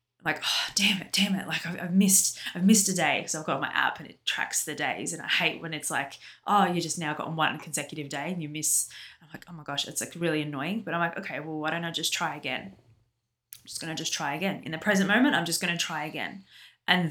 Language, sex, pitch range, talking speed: English, female, 155-185 Hz, 275 wpm